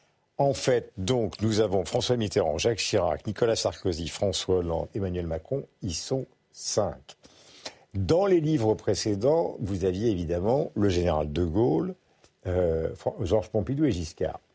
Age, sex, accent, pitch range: 50-69, male, French, 95-140 Hz